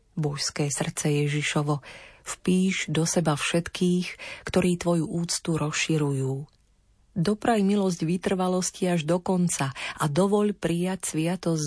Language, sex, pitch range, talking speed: Slovak, female, 155-185 Hz, 110 wpm